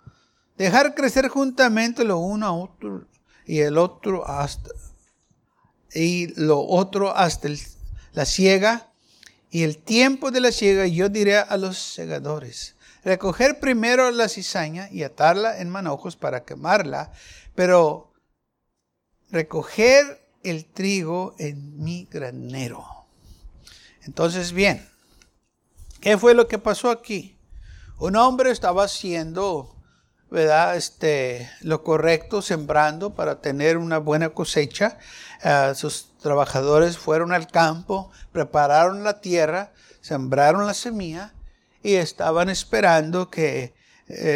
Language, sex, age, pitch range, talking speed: Spanish, male, 60-79, 150-205 Hz, 115 wpm